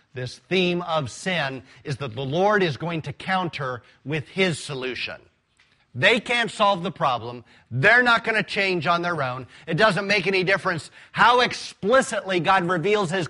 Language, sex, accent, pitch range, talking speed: English, male, American, 145-205 Hz, 170 wpm